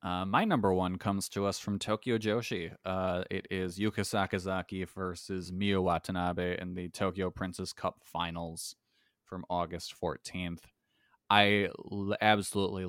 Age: 20-39